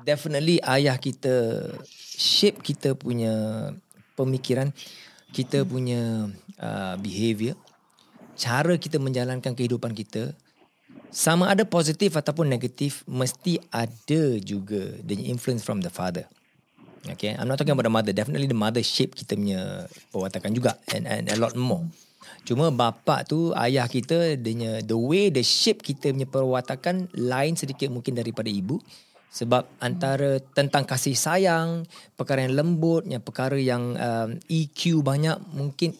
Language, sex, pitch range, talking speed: Malay, male, 120-155 Hz, 135 wpm